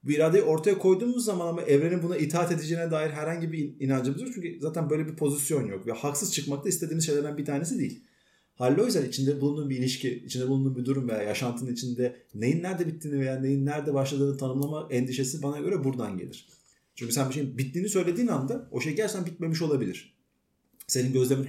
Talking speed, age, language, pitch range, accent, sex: 190 wpm, 30-49, Turkish, 125-165 Hz, native, male